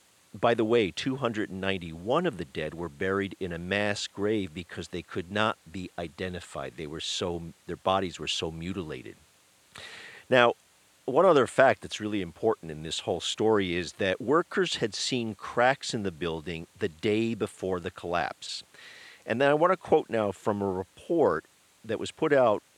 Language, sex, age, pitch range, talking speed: English, male, 50-69, 95-120 Hz, 175 wpm